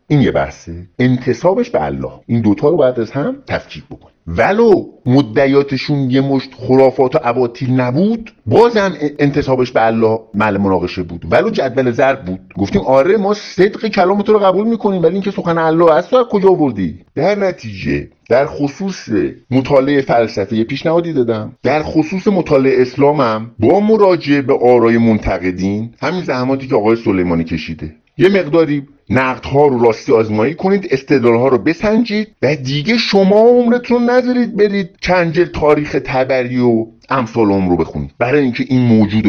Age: 50-69